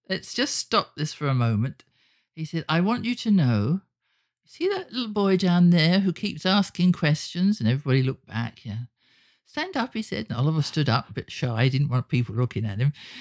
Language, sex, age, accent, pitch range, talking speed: English, male, 50-69, British, 145-235 Hz, 215 wpm